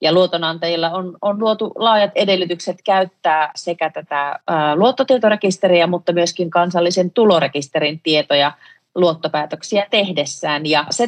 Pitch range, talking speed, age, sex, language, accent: 150-180 Hz, 115 wpm, 30-49, female, Finnish, native